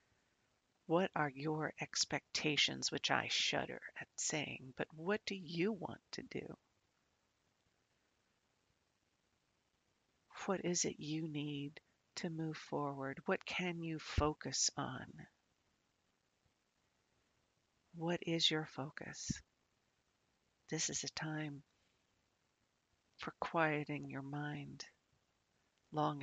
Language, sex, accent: English, female, American